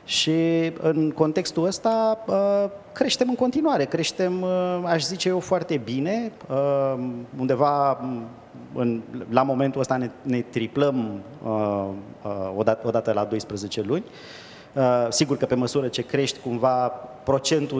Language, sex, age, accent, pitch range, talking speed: Romanian, male, 30-49, native, 125-170 Hz, 110 wpm